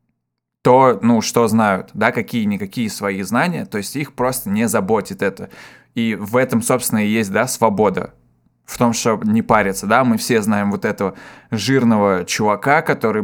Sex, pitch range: male, 110-150 Hz